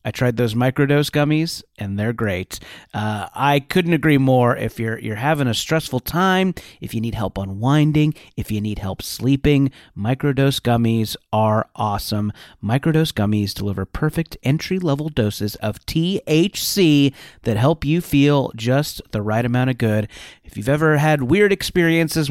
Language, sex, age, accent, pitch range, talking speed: English, male, 30-49, American, 110-155 Hz, 160 wpm